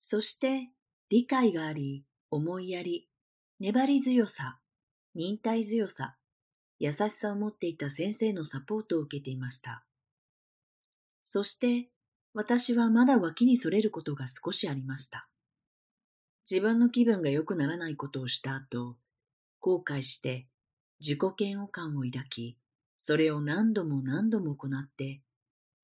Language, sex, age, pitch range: Japanese, female, 40-59, 135-210 Hz